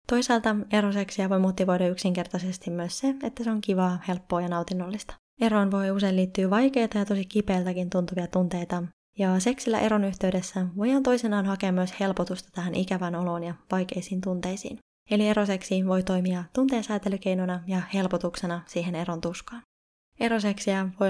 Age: 20-39